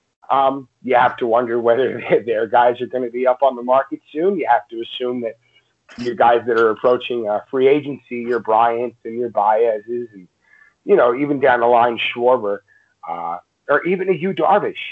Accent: American